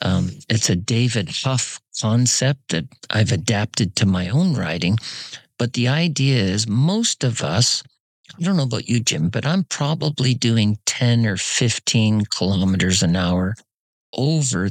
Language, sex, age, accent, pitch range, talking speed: English, male, 50-69, American, 105-140 Hz, 150 wpm